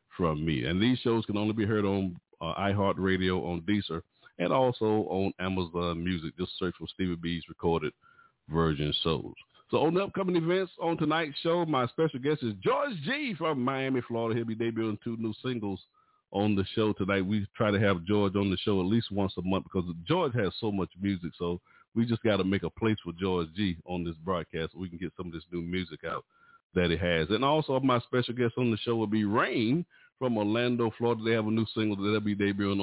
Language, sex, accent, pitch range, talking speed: English, male, American, 95-130 Hz, 225 wpm